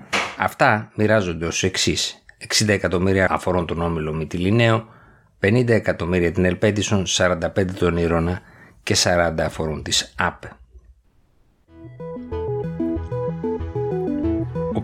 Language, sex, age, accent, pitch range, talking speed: Greek, male, 50-69, native, 85-105 Hz, 95 wpm